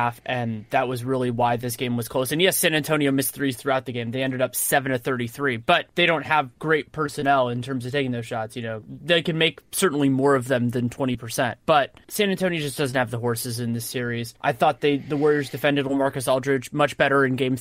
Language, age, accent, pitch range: English, 20-39, American, 125-155 Hz